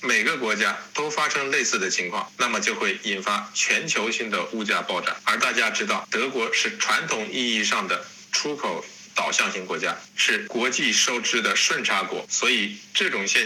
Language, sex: Chinese, male